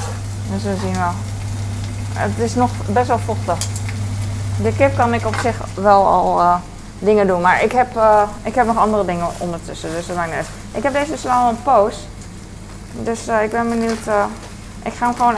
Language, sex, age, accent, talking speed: Dutch, female, 20-39, Dutch, 200 wpm